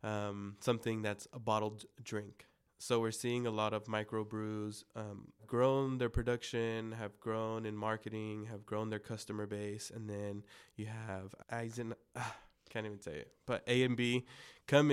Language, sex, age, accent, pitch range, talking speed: English, male, 20-39, American, 105-120 Hz, 180 wpm